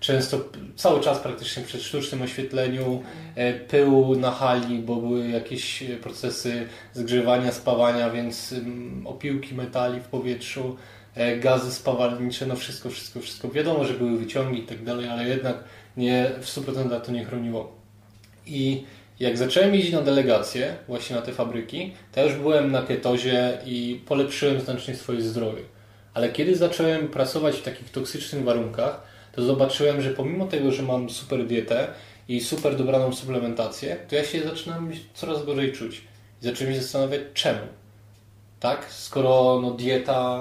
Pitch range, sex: 120-135 Hz, male